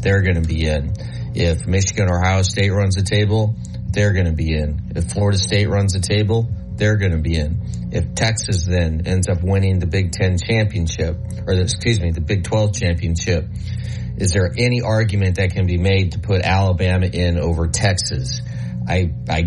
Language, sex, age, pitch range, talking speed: English, male, 30-49, 85-105 Hz, 190 wpm